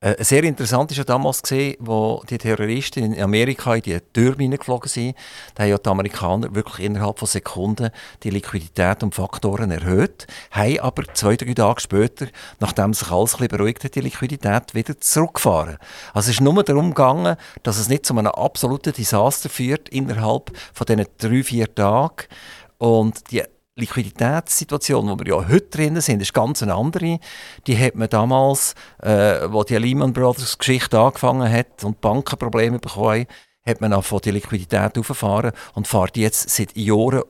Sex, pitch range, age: male, 105-130 Hz, 50-69